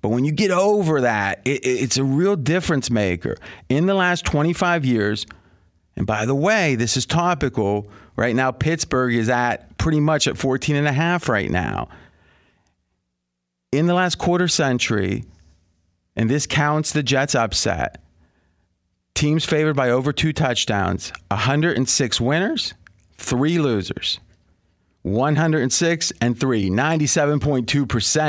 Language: English